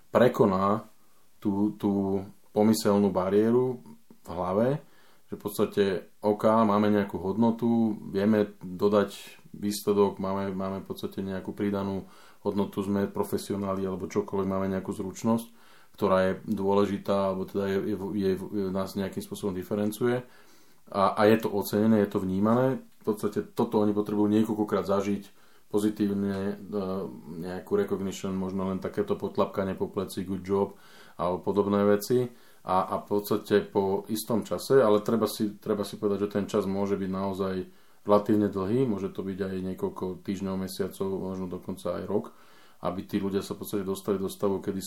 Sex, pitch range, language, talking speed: male, 95-105 Hz, Slovak, 155 wpm